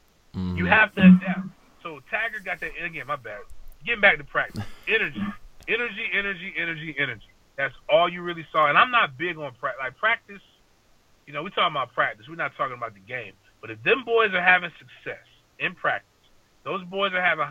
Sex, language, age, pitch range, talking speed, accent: male, English, 30-49, 130-190 Hz, 200 wpm, American